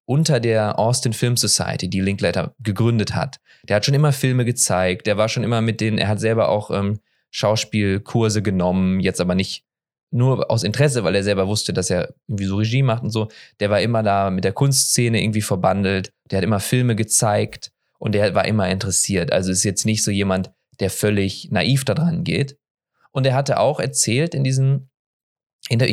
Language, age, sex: English, 20-39, male